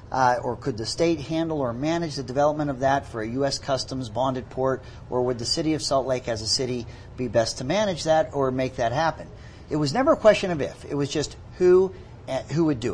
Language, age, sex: English, 50-69, male